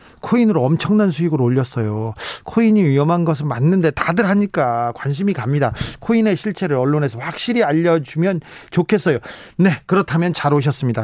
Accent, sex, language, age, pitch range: native, male, Korean, 40-59, 140-200 Hz